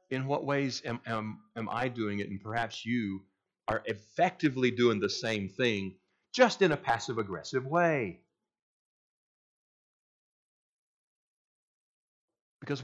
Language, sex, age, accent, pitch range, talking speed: English, male, 50-69, American, 115-155 Hz, 110 wpm